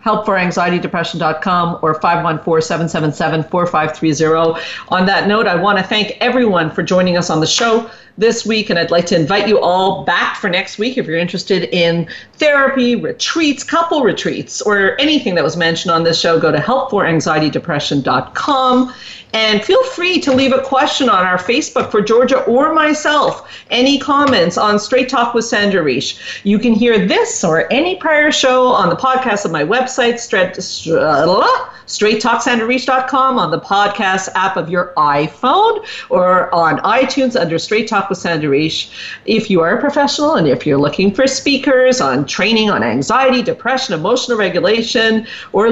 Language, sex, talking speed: English, female, 165 wpm